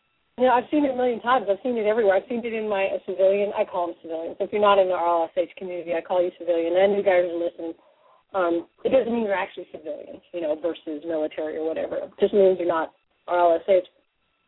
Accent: American